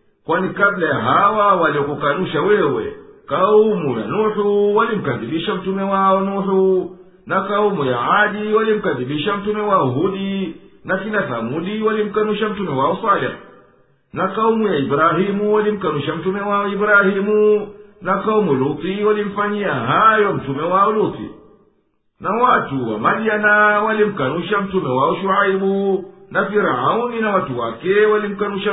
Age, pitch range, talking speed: 50-69, 170-205 Hz, 120 wpm